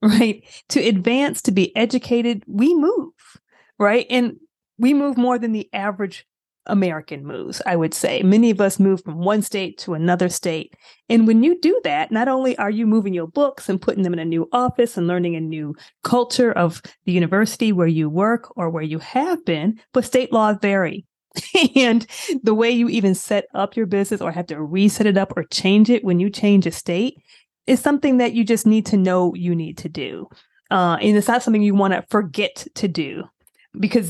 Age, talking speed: 30-49, 205 wpm